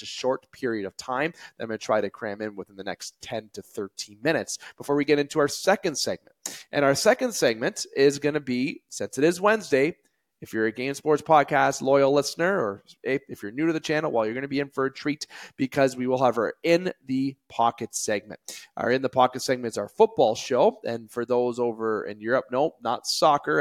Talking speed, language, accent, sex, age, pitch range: 230 wpm, English, American, male, 30-49, 110-145 Hz